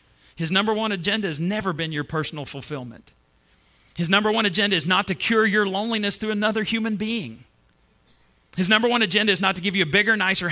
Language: English